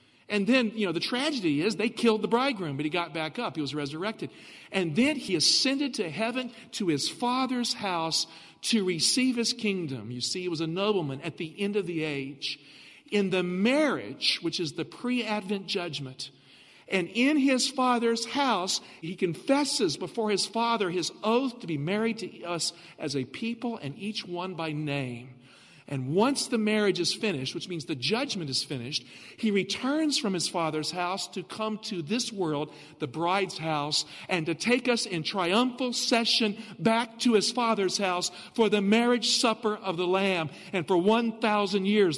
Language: English